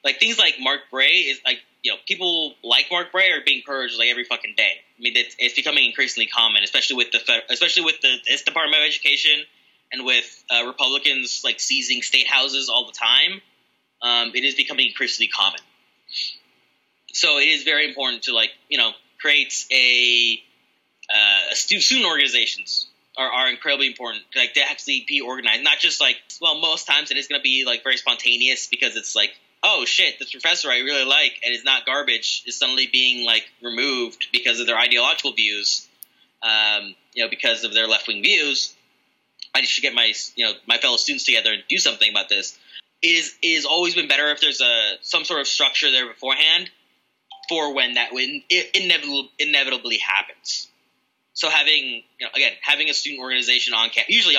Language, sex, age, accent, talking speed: English, male, 20-39, American, 190 wpm